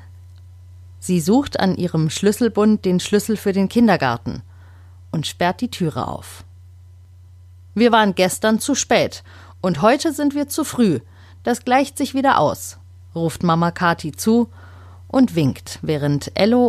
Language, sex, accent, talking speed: German, female, German, 140 wpm